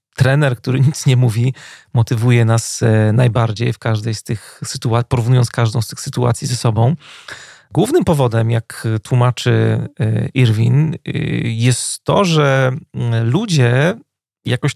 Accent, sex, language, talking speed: native, male, Polish, 120 wpm